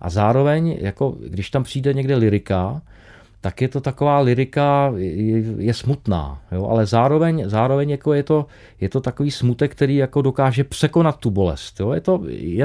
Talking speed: 170 wpm